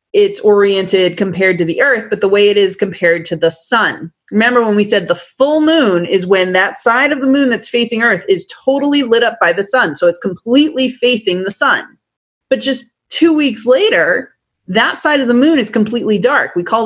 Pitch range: 185-255 Hz